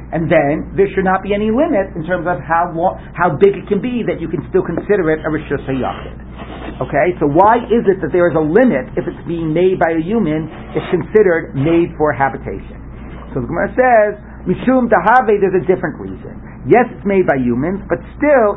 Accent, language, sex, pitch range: American, English, male, 150-200 Hz